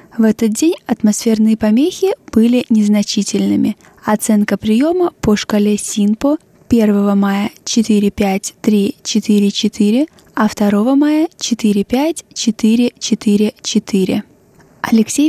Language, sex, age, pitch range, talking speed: Russian, female, 20-39, 205-235 Hz, 80 wpm